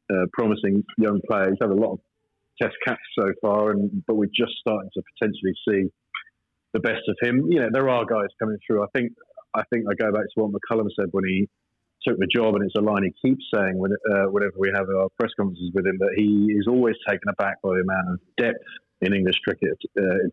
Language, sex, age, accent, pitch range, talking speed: English, male, 40-59, British, 100-110 Hz, 240 wpm